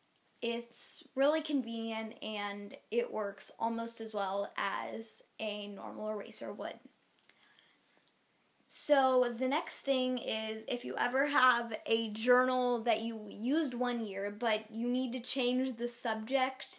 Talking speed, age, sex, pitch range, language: 130 wpm, 10-29, female, 220-255 Hz, English